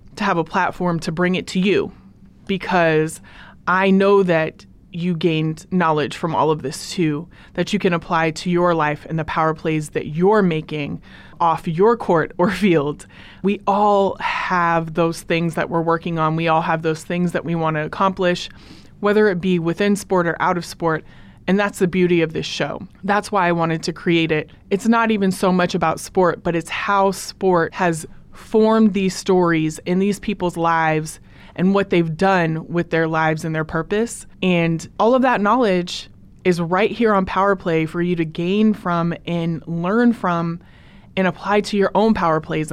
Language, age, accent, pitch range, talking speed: English, 20-39, American, 165-195 Hz, 190 wpm